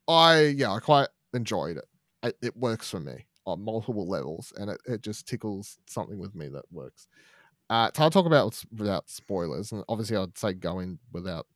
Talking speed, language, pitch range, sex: 195 wpm, English, 105-155 Hz, male